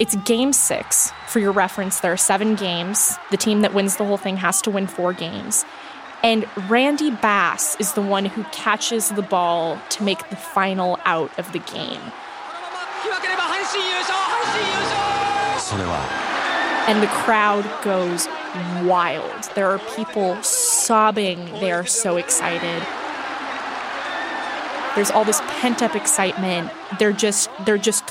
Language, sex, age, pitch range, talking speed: English, female, 20-39, 185-240 Hz, 130 wpm